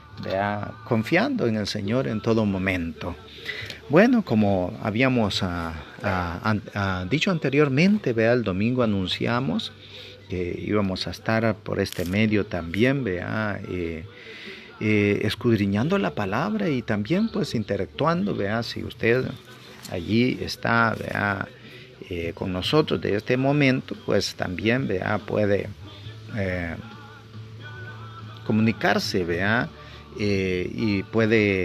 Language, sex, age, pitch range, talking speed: Spanish, male, 40-59, 95-120 Hz, 115 wpm